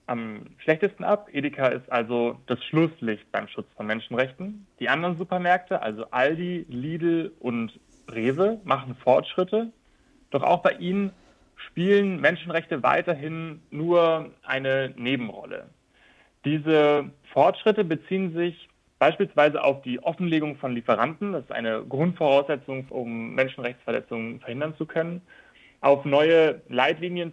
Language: German